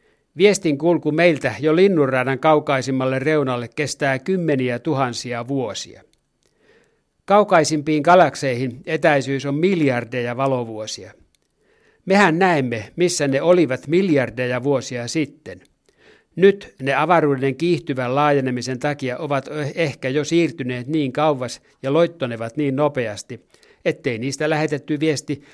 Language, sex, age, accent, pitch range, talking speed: Finnish, male, 60-79, native, 130-160 Hz, 105 wpm